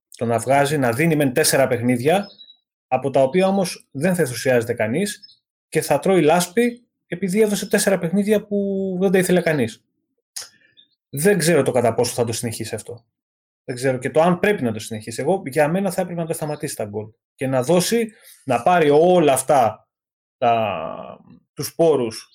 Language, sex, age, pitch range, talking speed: Greek, male, 30-49, 130-200 Hz, 180 wpm